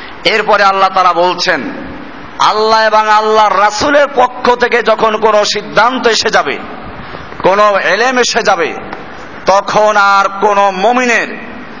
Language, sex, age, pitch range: Bengali, male, 50-69, 180-230 Hz